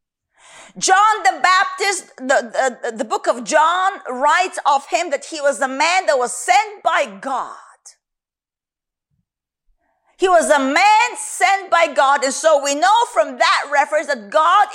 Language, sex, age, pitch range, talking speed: English, female, 40-59, 280-405 Hz, 150 wpm